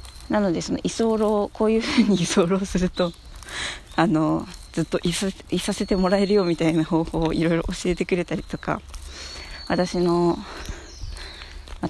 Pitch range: 155-200 Hz